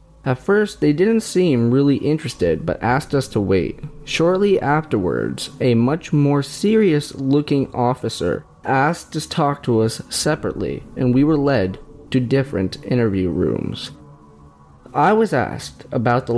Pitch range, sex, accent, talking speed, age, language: 105-145 Hz, male, American, 145 wpm, 20-39, English